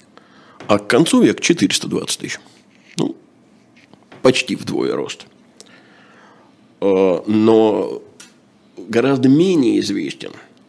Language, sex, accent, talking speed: Russian, male, native, 80 wpm